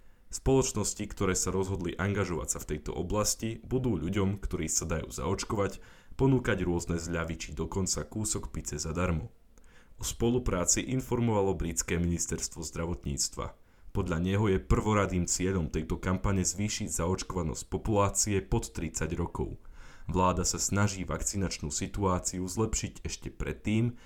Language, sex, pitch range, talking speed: Slovak, male, 85-105 Hz, 125 wpm